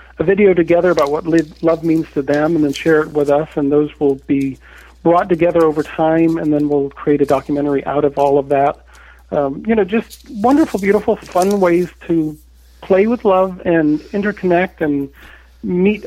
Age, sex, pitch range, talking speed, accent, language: 50-69, male, 145-175 Hz, 185 wpm, American, English